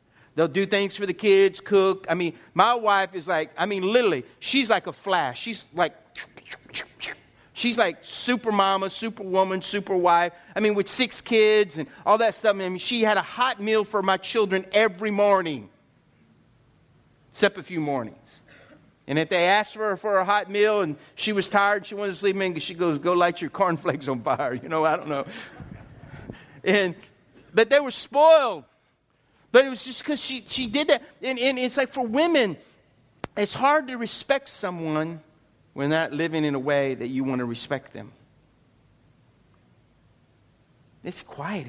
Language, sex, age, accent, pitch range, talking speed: English, male, 50-69, American, 150-220 Hz, 185 wpm